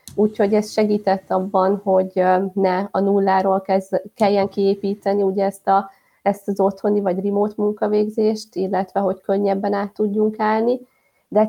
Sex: female